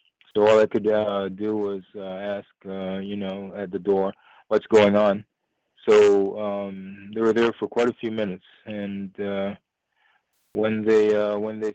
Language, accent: English, American